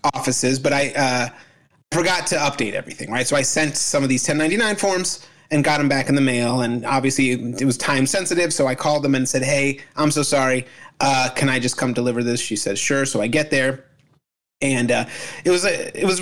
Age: 30-49